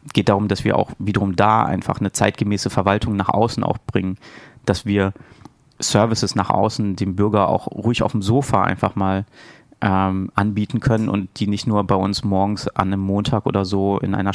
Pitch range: 100-120 Hz